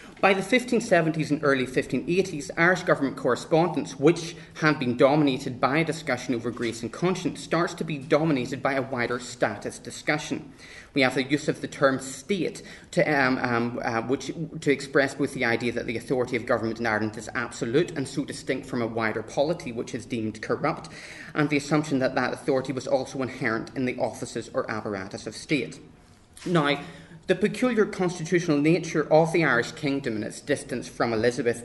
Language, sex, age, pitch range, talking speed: English, male, 30-49, 120-155 Hz, 180 wpm